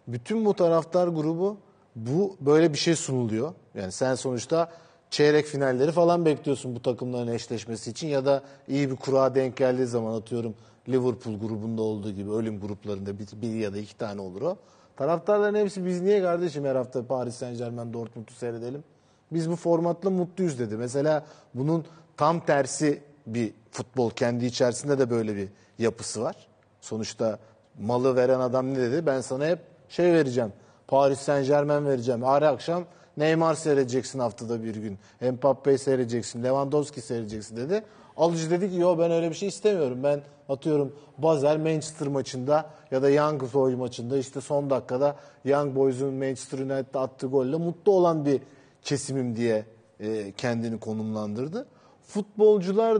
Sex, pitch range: male, 120-155 Hz